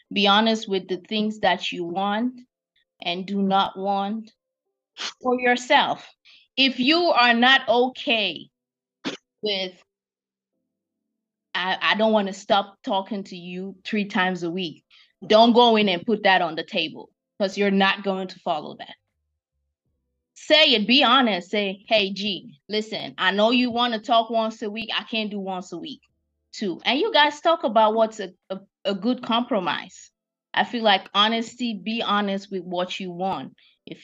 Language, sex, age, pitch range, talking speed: English, female, 20-39, 185-235 Hz, 165 wpm